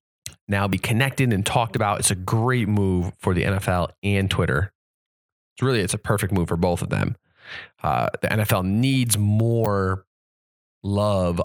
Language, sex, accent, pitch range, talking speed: English, male, American, 95-115 Hz, 160 wpm